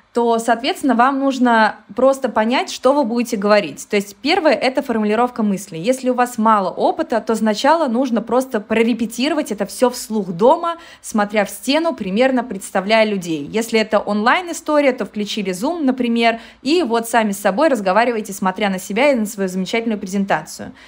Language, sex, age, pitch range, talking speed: Russian, female, 20-39, 210-260 Hz, 165 wpm